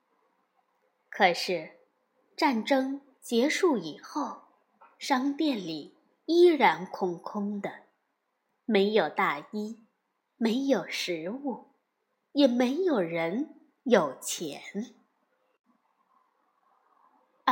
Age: 20-39